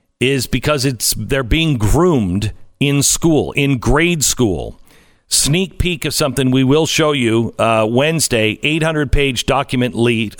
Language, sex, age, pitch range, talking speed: English, male, 50-69, 120-170 Hz, 150 wpm